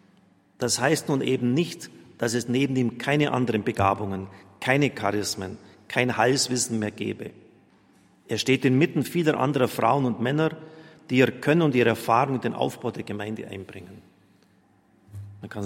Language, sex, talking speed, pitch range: German, male, 155 wpm, 110-140 Hz